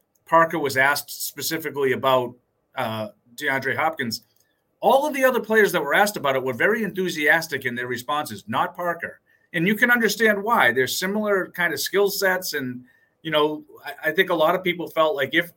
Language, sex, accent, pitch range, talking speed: English, male, American, 130-175 Hz, 195 wpm